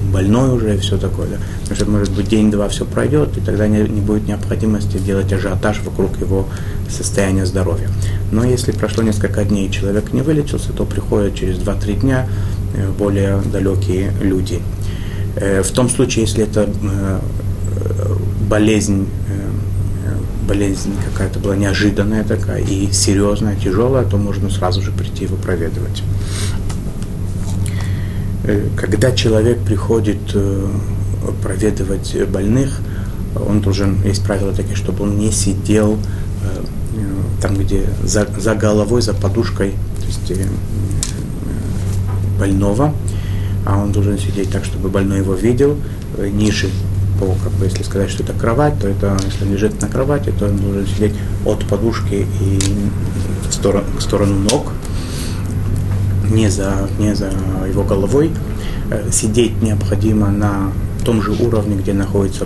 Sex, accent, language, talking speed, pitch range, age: male, native, Russian, 130 wpm, 95-105 Hz, 30-49